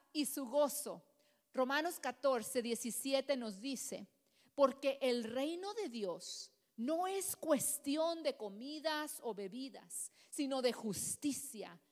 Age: 40-59